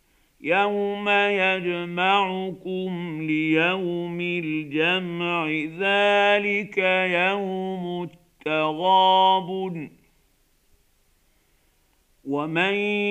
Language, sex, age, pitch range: Arabic, male, 50-69, 155-190 Hz